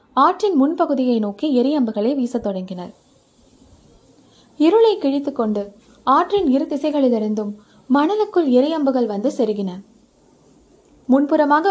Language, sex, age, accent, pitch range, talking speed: Tamil, female, 20-39, native, 220-295 Hz, 85 wpm